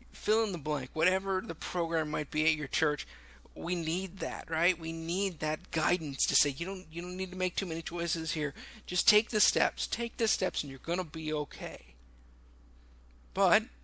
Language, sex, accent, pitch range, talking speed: English, male, American, 140-185 Hz, 200 wpm